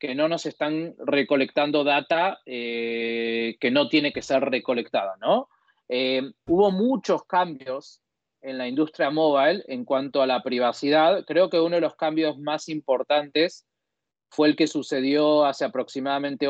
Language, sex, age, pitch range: Spanish, male, 20-39, 130-170 Hz